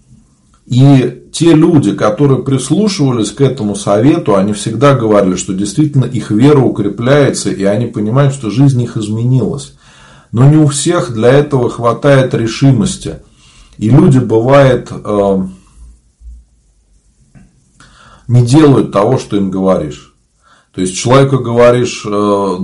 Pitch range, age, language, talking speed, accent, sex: 105-135 Hz, 40-59, Russian, 115 wpm, native, male